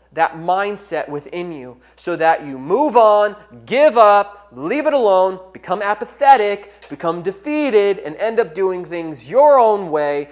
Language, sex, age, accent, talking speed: English, male, 30-49, American, 150 wpm